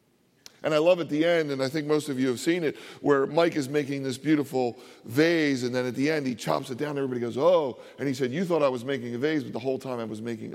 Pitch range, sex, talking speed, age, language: 130-175 Hz, male, 295 wpm, 40-59, English